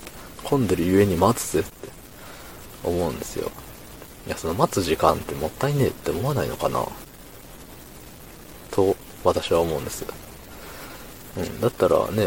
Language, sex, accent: Japanese, male, native